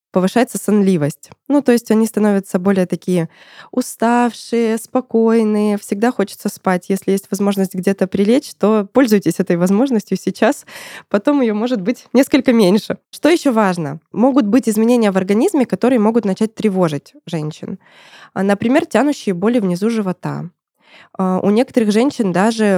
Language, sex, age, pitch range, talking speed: Russian, female, 20-39, 185-235 Hz, 135 wpm